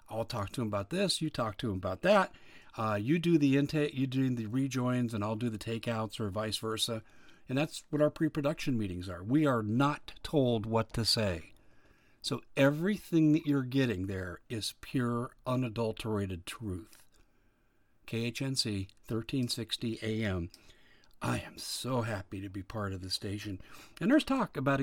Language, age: English, 50-69